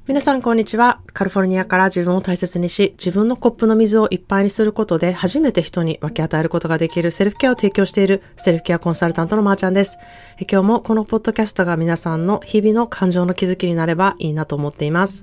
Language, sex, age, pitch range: Japanese, female, 20-39, 155-195 Hz